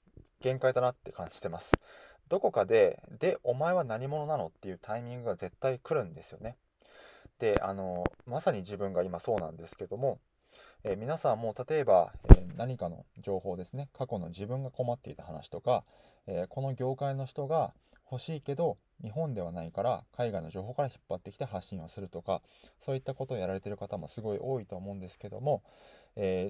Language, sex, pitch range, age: Japanese, male, 90-130 Hz, 20-39